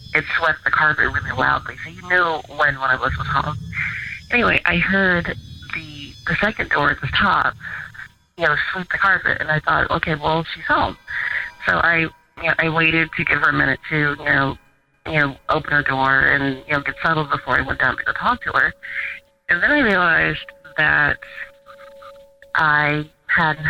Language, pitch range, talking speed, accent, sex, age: English, 145-180 Hz, 195 wpm, American, female, 30-49